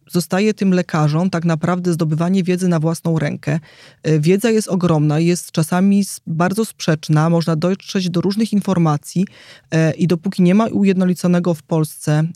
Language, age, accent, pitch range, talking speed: Polish, 20-39, native, 165-195 Hz, 140 wpm